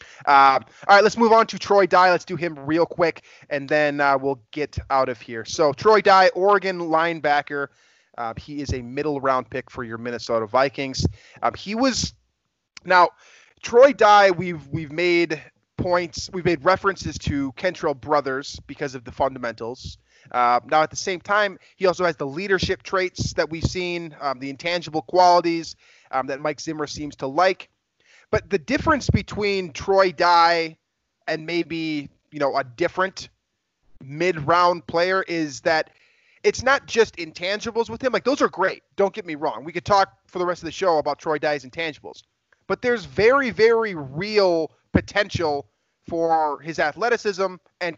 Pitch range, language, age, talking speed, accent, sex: 145-190 Hz, English, 20-39, 170 wpm, American, male